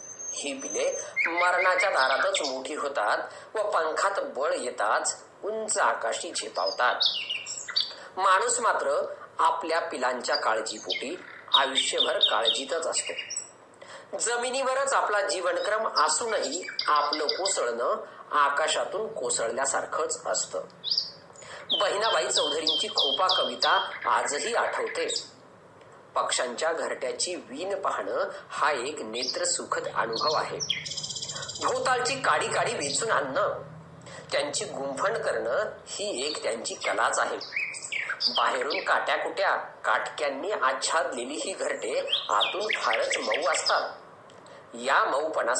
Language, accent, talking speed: Marathi, native, 55 wpm